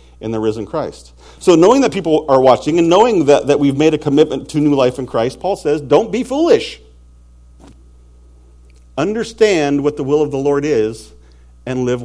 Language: English